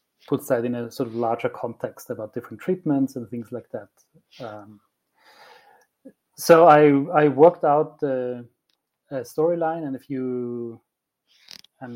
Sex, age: male, 30-49